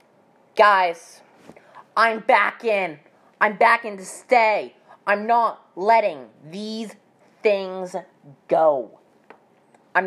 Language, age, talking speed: English, 20-39, 95 wpm